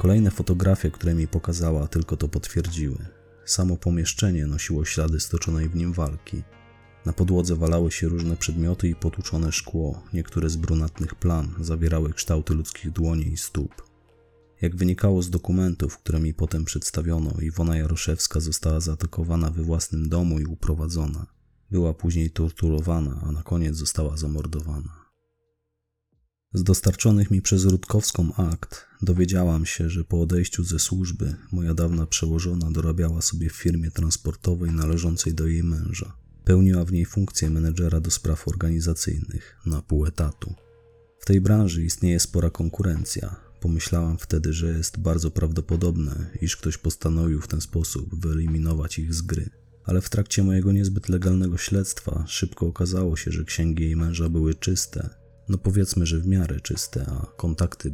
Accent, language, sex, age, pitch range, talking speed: native, Polish, male, 30-49, 80-95 Hz, 145 wpm